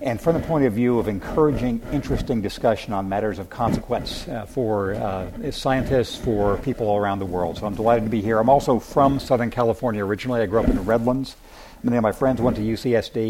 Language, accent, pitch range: English, American, 105-130 Hz